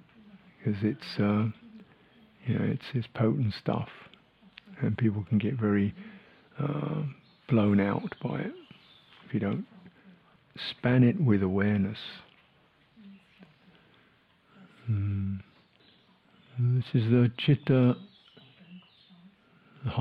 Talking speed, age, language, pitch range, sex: 95 wpm, 50-69, English, 115-180 Hz, male